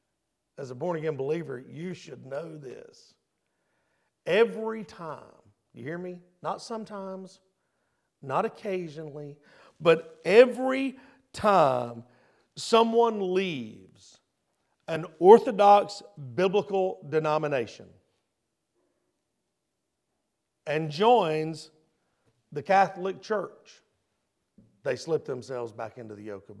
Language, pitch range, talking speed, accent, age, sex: English, 170-245 Hz, 90 wpm, American, 50-69, male